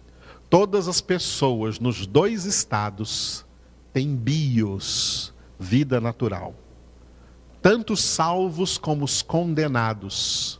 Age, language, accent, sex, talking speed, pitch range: 50-69, Portuguese, Brazilian, male, 90 wpm, 105-145 Hz